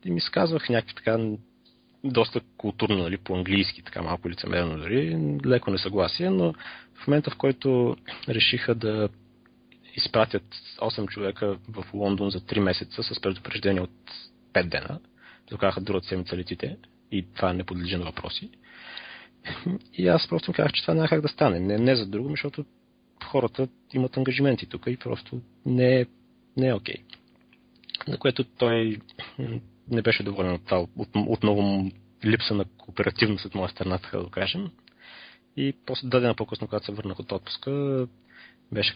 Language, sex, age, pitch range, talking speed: Bulgarian, male, 30-49, 95-125 Hz, 155 wpm